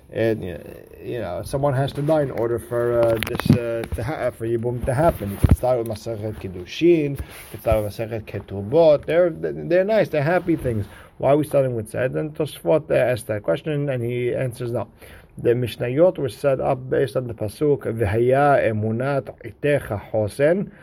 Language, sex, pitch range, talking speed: English, male, 110-135 Hz, 180 wpm